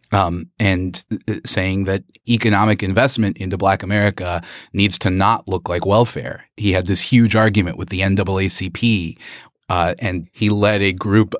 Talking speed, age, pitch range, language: 155 wpm, 30-49, 90-115 Hz, English